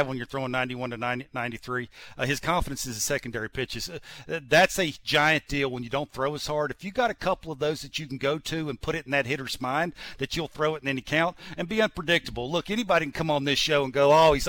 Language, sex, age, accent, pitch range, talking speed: English, male, 50-69, American, 135-165 Hz, 265 wpm